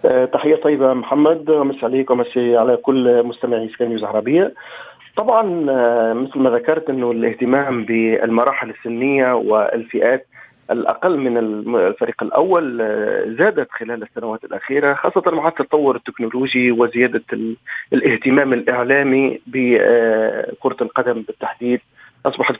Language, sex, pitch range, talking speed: Arabic, male, 120-150 Hz, 105 wpm